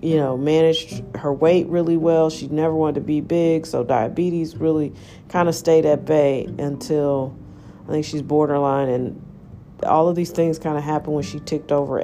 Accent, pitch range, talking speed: American, 140-170 Hz, 190 wpm